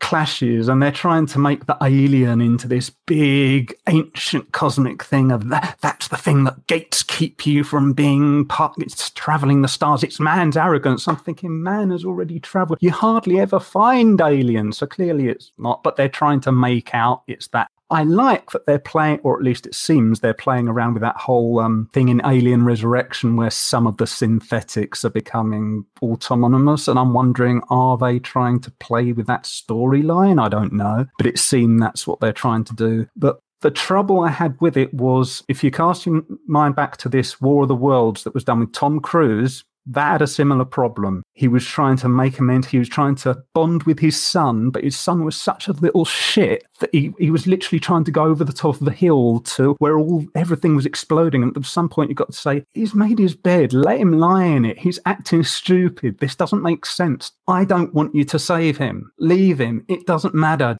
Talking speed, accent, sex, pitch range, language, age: 215 wpm, British, male, 125-160 Hz, English, 30-49